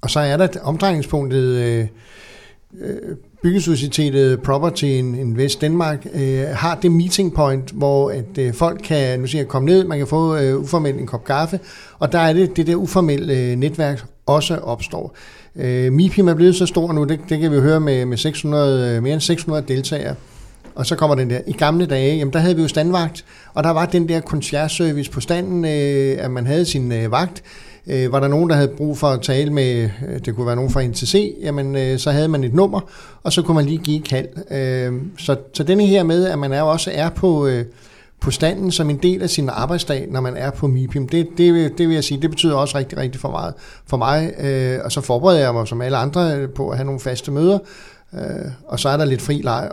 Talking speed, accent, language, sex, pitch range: 210 wpm, native, Danish, male, 135-170 Hz